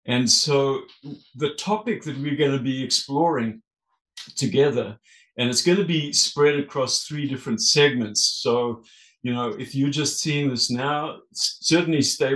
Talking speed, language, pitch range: 155 wpm, English, 120-155 Hz